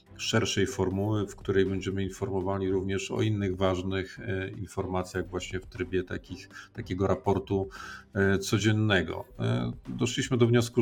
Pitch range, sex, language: 90-100 Hz, male, Polish